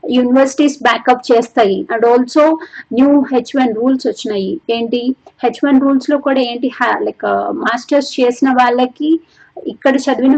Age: 30-49